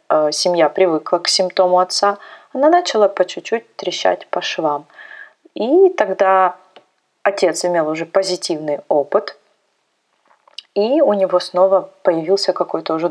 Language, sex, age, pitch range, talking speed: Russian, female, 20-39, 175-200 Hz, 120 wpm